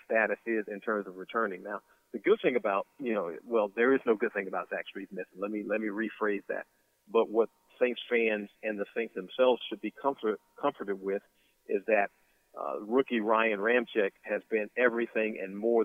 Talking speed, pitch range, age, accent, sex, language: 200 wpm, 105-115 Hz, 40-59, American, male, English